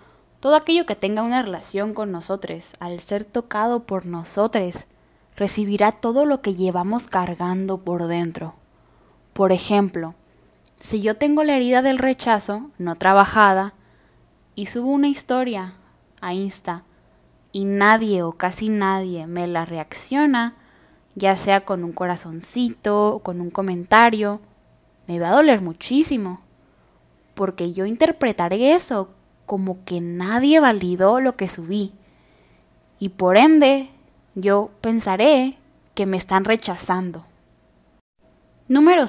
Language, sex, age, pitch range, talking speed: Spanish, female, 10-29, 185-255 Hz, 125 wpm